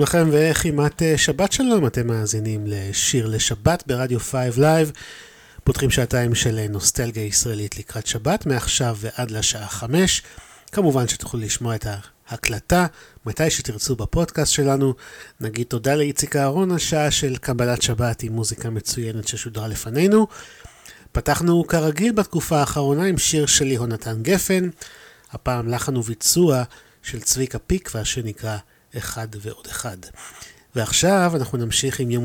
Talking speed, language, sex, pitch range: 125 wpm, Hebrew, male, 115-150 Hz